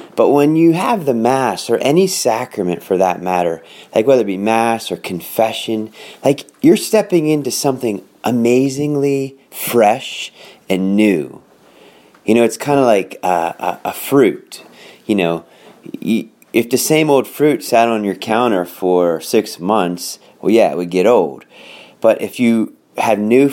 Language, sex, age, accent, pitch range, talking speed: English, male, 30-49, American, 95-125 Hz, 160 wpm